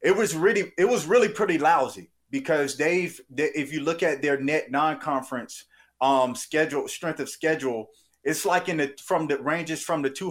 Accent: American